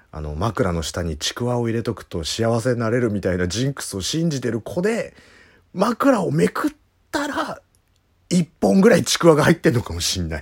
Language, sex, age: Japanese, male, 40-59